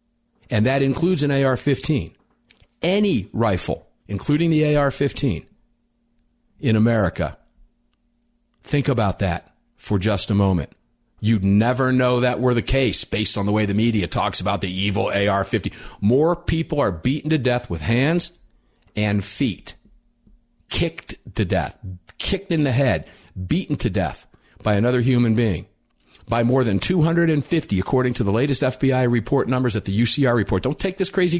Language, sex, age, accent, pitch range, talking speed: English, male, 50-69, American, 105-140 Hz, 155 wpm